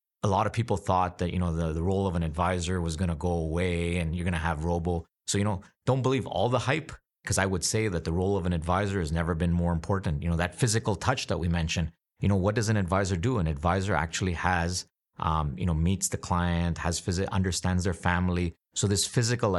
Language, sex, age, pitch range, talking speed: English, male, 30-49, 85-95 Hz, 250 wpm